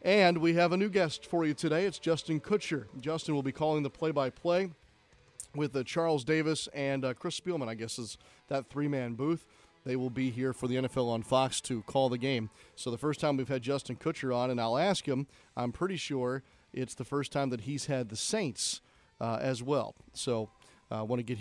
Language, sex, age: English, male, 40-59